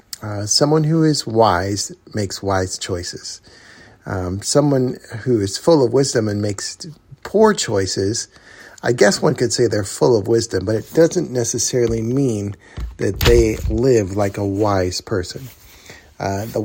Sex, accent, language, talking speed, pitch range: male, American, English, 150 wpm, 105-140 Hz